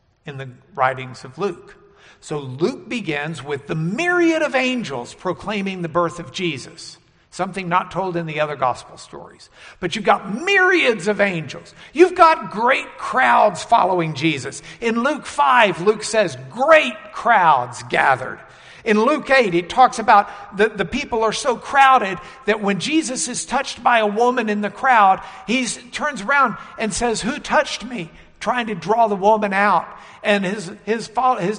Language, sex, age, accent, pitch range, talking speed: English, male, 60-79, American, 165-235 Hz, 165 wpm